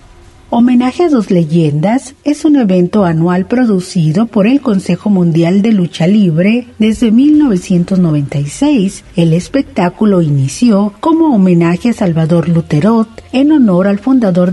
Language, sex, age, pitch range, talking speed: Spanish, female, 40-59, 175-245 Hz, 125 wpm